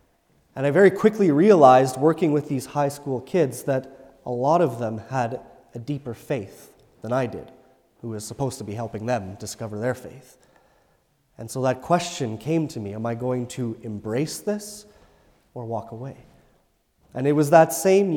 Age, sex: 30-49, male